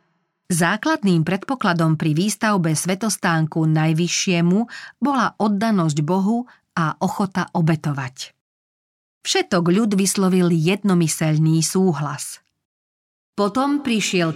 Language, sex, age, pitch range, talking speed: Slovak, female, 40-59, 170-205 Hz, 80 wpm